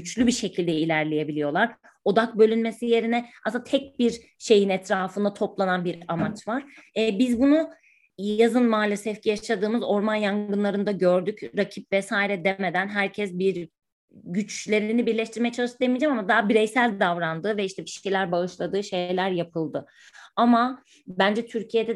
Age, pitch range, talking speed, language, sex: 30-49, 180-225 Hz, 130 wpm, Turkish, female